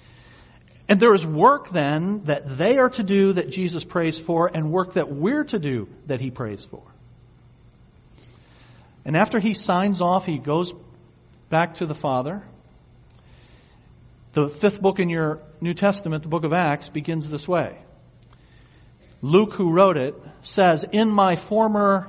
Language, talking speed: English, 155 wpm